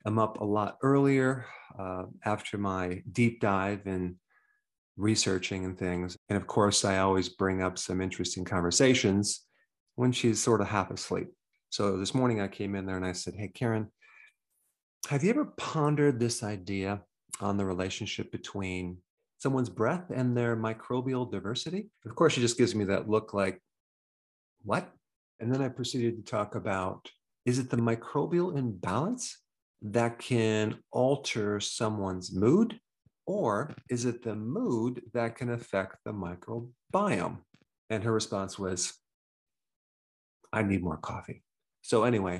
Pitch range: 95-120 Hz